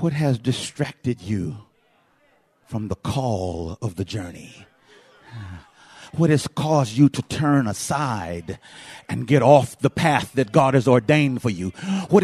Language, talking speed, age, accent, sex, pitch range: English, 140 wpm, 50-69, American, male, 105-155 Hz